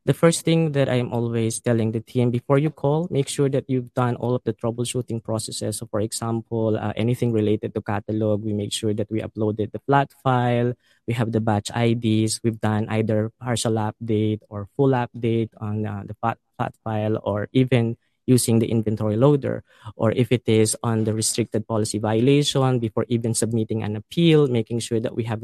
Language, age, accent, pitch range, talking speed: English, 20-39, Filipino, 110-135 Hz, 200 wpm